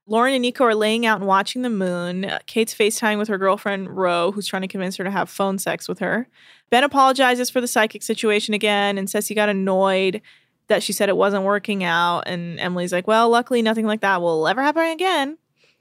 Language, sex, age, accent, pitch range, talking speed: English, female, 20-39, American, 190-240 Hz, 220 wpm